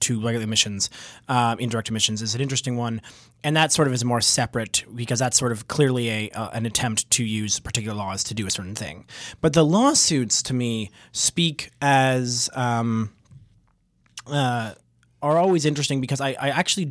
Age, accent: 20-39, American